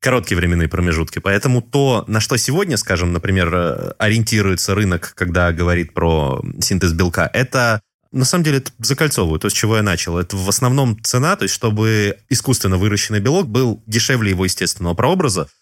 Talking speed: 160 wpm